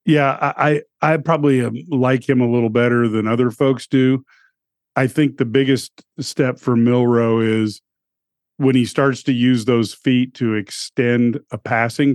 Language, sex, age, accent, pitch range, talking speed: English, male, 40-59, American, 110-130 Hz, 160 wpm